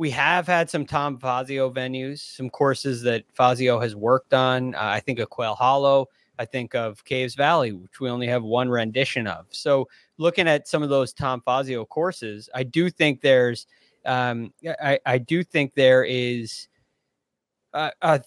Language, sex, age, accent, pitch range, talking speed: English, male, 20-39, American, 120-150 Hz, 175 wpm